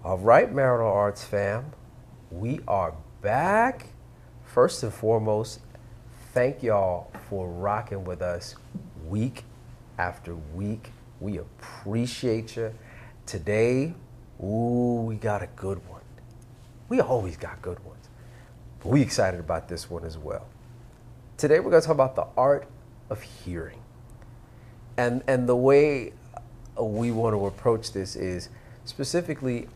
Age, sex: 40-59, male